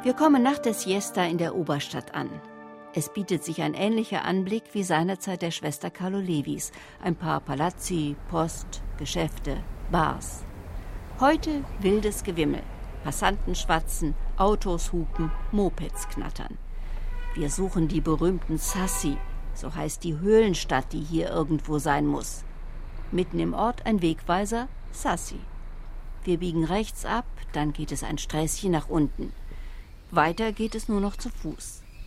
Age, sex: 60-79, female